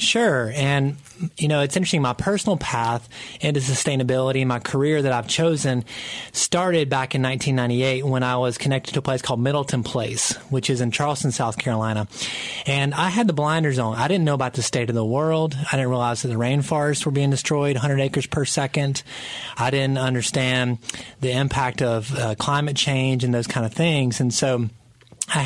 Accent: American